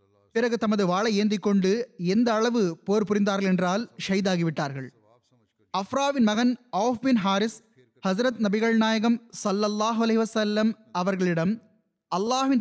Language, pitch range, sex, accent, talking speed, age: Tamil, 180-230 Hz, male, native, 105 wpm, 20-39